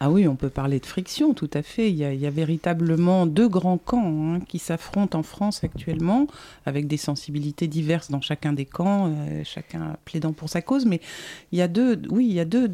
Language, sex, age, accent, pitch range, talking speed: French, female, 50-69, French, 155-200 Hz, 235 wpm